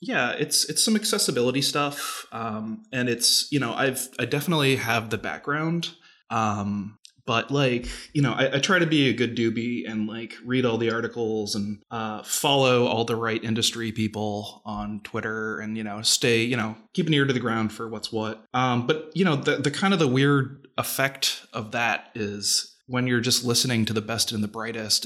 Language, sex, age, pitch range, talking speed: English, male, 20-39, 110-135 Hz, 205 wpm